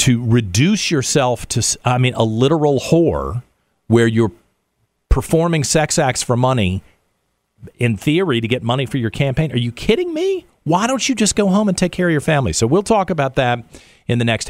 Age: 40-59